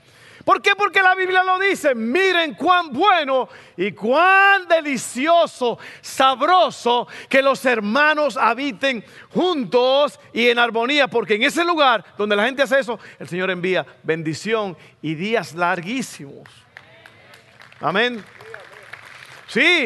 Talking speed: 120 wpm